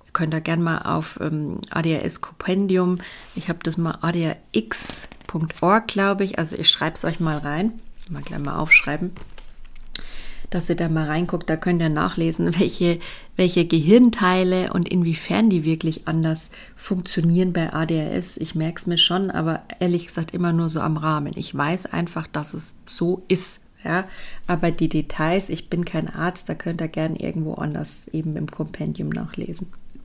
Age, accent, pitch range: 30-49, German, 160-185 Hz